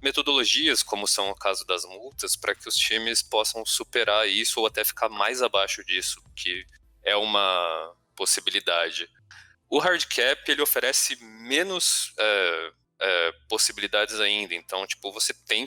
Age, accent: 20-39, Brazilian